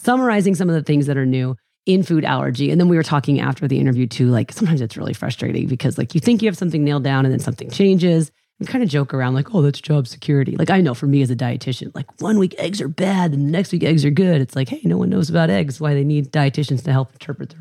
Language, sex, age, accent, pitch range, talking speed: English, female, 30-49, American, 135-175 Hz, 290 wpm